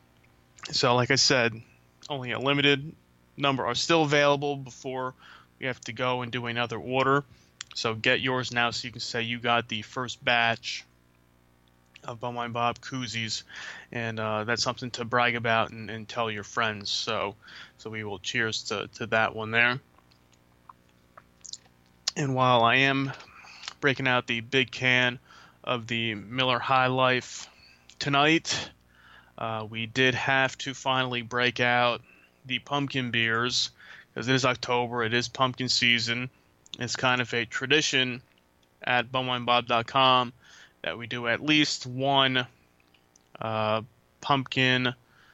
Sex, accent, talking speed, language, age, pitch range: male, American, 145 wpm, English, 20-39, 110-130 Hz